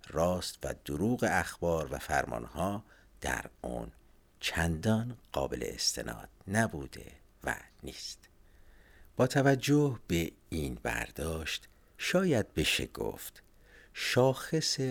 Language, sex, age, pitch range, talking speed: Persian, male, 50-69, 75-105 Hz, 95 wpm